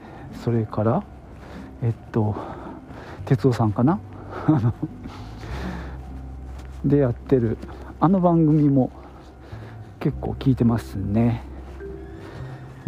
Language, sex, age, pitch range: Japanese, male, 50-69, 100-145 Hz